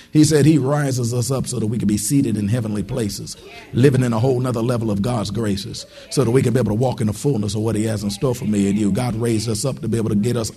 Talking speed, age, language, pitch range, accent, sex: 310 wpm, 50-69, English, 105-140 Hz, American, male